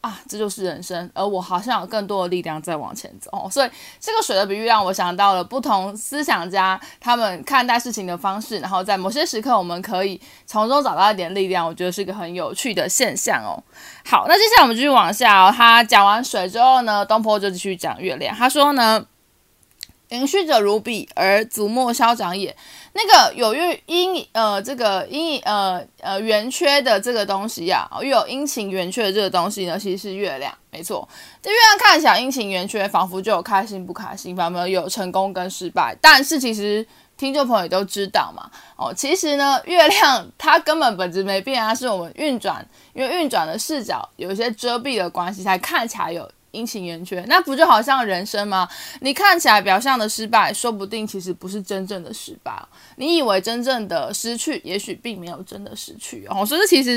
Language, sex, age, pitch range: Chinese, female, 20-39, 190-265 Hz